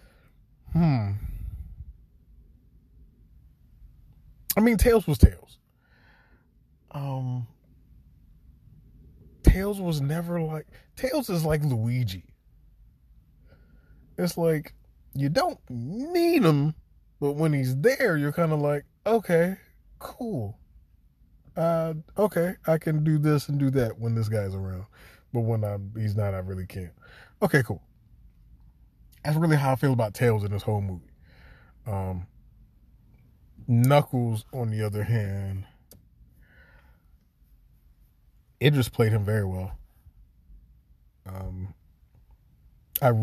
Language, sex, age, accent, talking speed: English, male, 20-39, American, 105 wpm